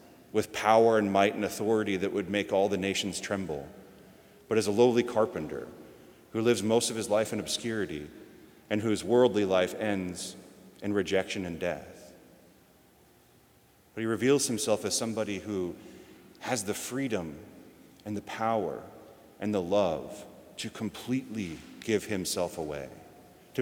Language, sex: English, male